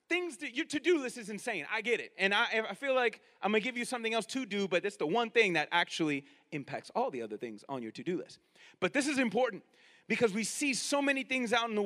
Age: 30-49